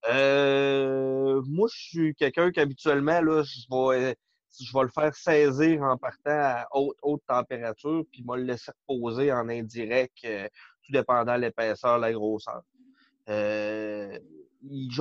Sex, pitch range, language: male, 115-150 Hz, French